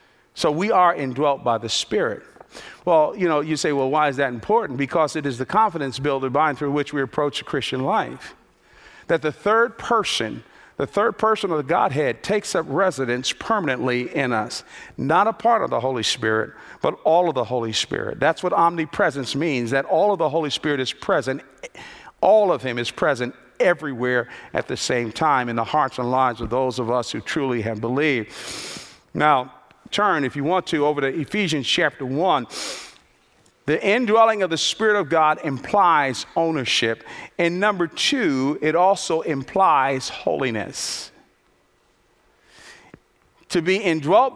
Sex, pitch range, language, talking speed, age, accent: male, 135-185 Hz, English, 170 wpm, 50-69, American